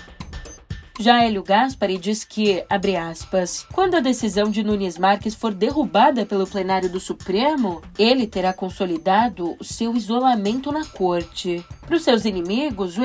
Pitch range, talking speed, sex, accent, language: 195-275 Hz, 145 wpm, female, Brazilian, Portuguese